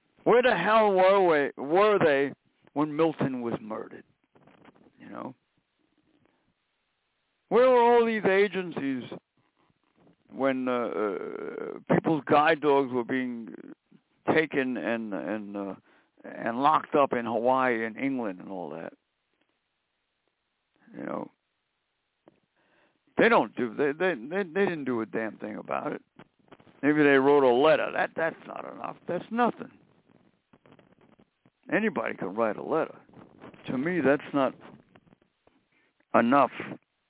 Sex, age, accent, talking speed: male, 60-79, American, 120 wpm